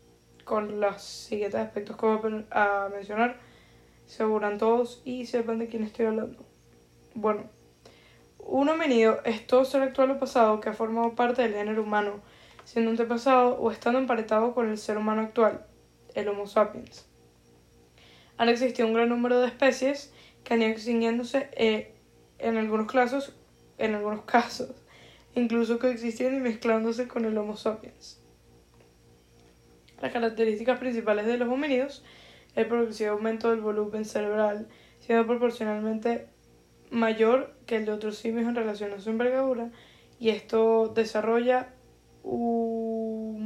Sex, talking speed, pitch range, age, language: female, 140 wpm, 215-240 Hz, 10-29, English